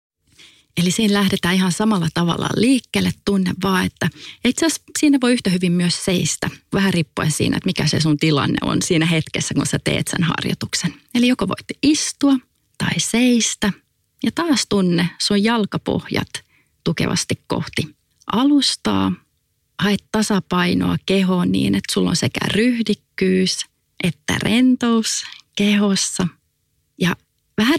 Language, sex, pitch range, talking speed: English, female, 165-225 Hz, 130 wpm